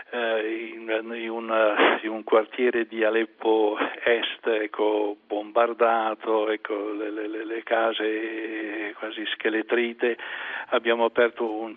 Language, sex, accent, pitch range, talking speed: Italian, male, native, 110-125 Hz, 110 wpm